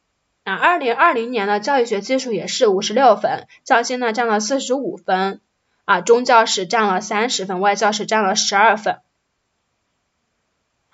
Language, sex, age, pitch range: Chinese, female, 20-39, 205-275 Hz